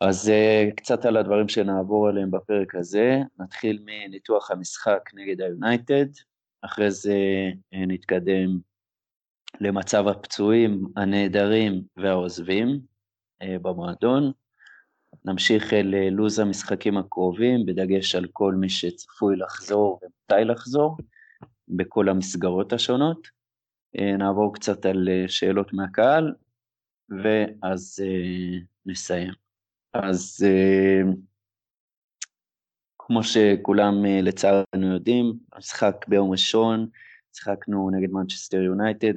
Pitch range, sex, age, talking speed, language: 95-110 Hz, male, 30-49, 85 wpm, Hebrew